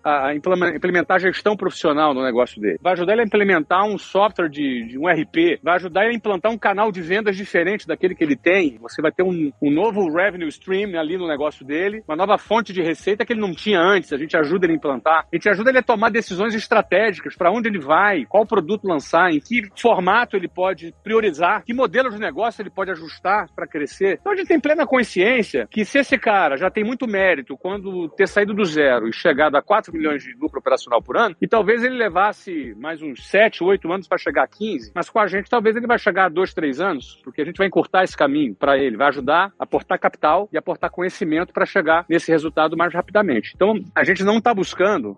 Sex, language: male, Portuguese